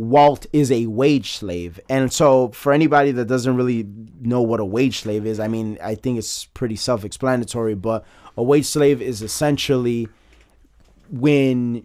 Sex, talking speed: male, 160 wpm